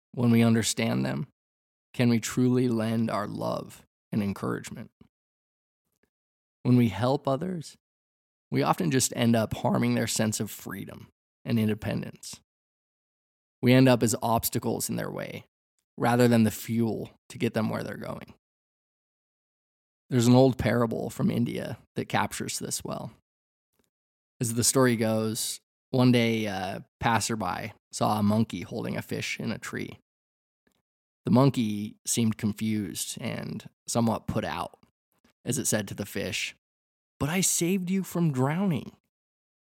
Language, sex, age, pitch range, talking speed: English, male, 20-39, 100-125 Hz, 140 wpm